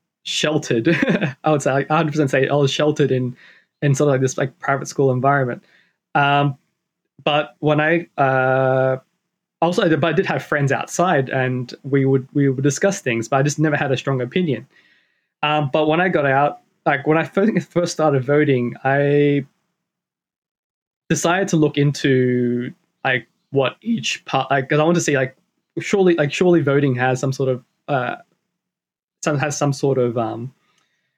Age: 20-39